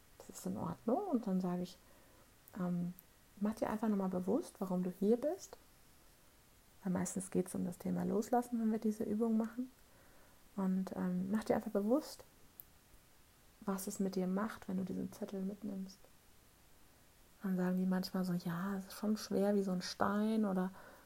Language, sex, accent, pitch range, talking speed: German, female, German, 185-220 Hz, 175 wpm